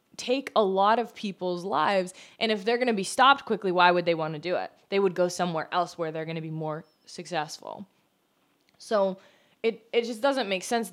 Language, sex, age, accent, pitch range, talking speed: English, female, 20-39, American, 170-225 Hz, 220 wpm